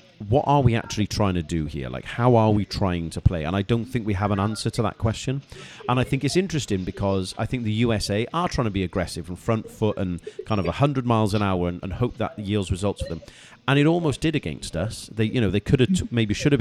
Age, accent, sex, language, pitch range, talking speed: 40-59, British, male, English, 95-115 Hz, 275 wpm